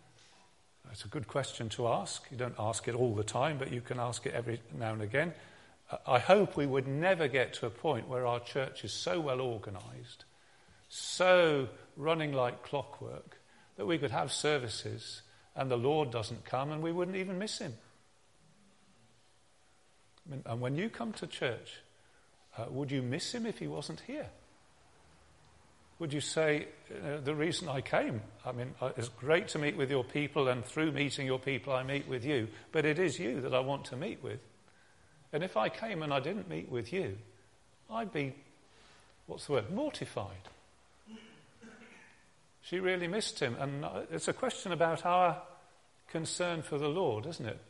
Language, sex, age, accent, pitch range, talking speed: English, male, 40-59, British, 115-165 Hz, 175 wpm